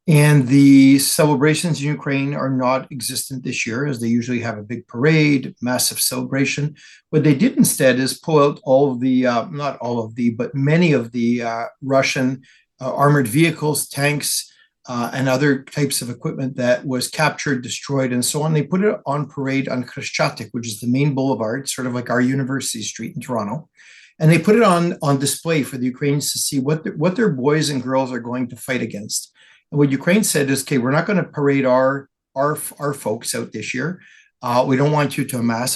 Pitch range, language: 125-150 Hz, English